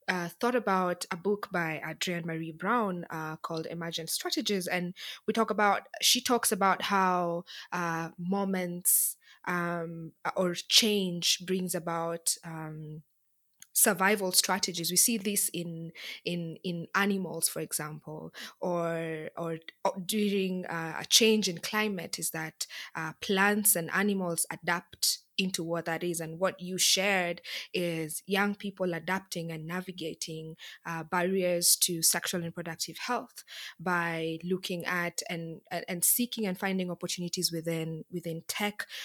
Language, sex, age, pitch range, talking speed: English, female, 20-39, 165-195 Hz, 135 wpm